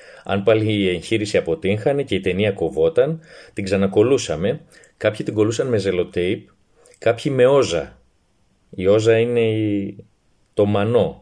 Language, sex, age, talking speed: Greek, male, 30-49, 130 wpm